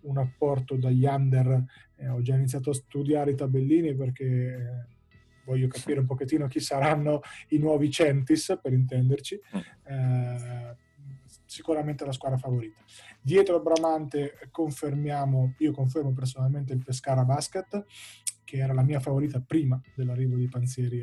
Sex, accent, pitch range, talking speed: male, native, 130-150 Hz, 135 wpm